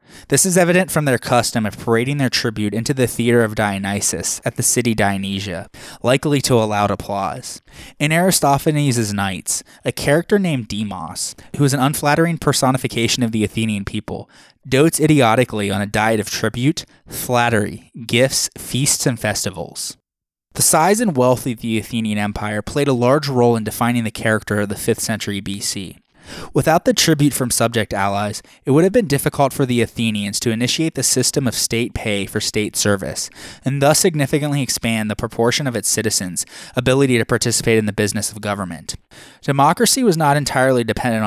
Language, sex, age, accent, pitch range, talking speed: English, male, 20-39, American, 105-140 Hz, 175 wpm